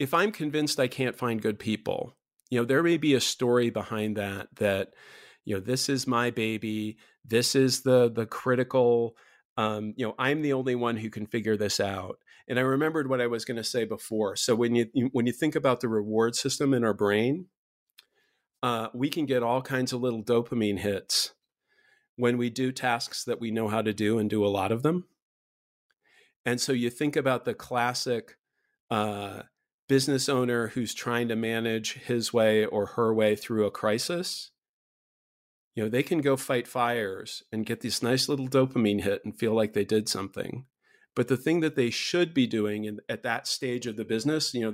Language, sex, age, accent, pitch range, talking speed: English, male, 40-59, American, 110-130 Hz, 200 wpm